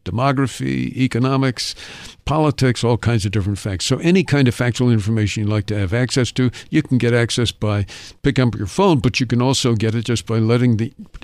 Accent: American